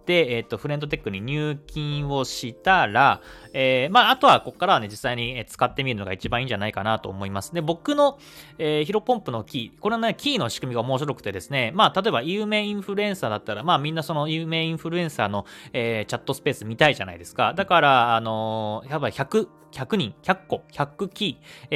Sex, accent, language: male, native, Japanese